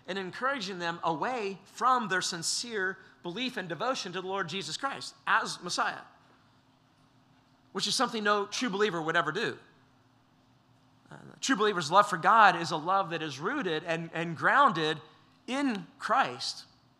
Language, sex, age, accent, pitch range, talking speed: English, male, 40-59, American, 140-205 Hz, 155 wpm